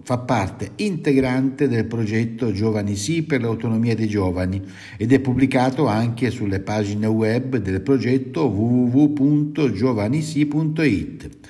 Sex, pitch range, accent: male, 100-135 Hz, native